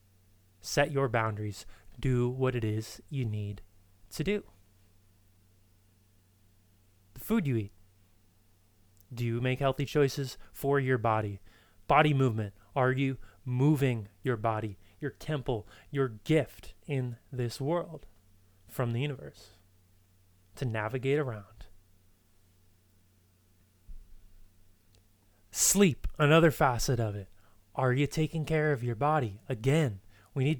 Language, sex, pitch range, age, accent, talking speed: English, male, 100-145 Hz, 30-49, American, 115 wpm